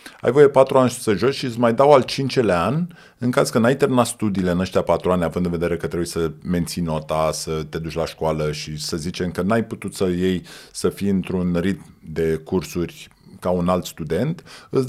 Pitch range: 90-135 Hz